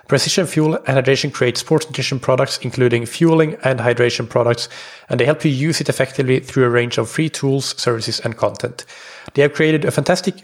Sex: male